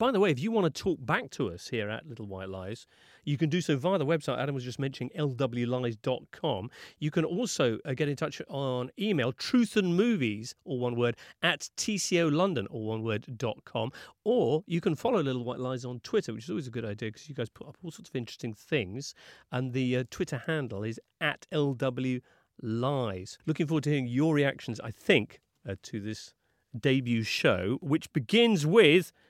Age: 40-59